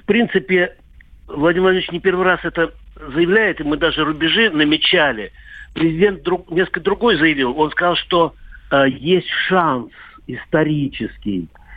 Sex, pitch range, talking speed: male, 120-165 Hz, 135 wpm